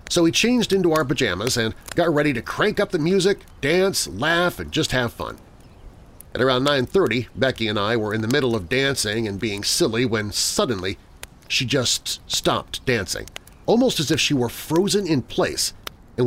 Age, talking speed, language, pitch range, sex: 40-59, 185 wpm, English, 100-140 Hz, male